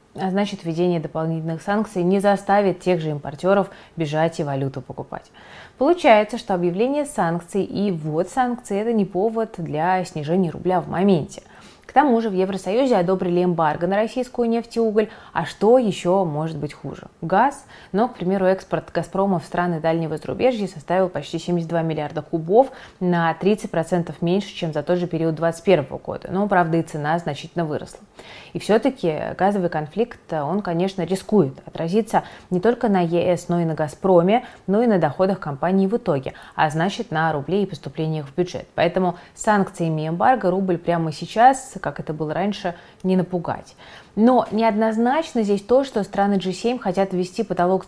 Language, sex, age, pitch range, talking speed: Russian, female, 20-39, 165-205 Hz, 165 wpm